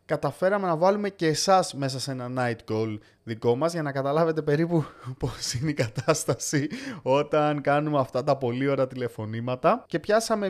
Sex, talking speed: male, 165 wpm